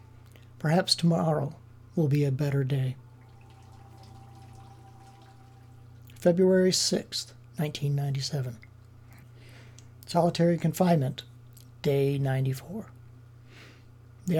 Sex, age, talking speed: male, 60-79, 65 wpm